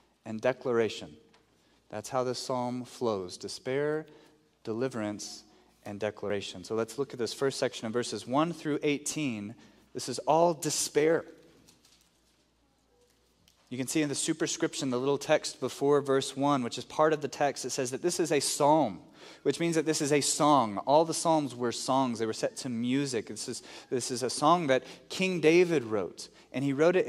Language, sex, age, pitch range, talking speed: English, male, 30-49, 120-150 Hz, 180 wpm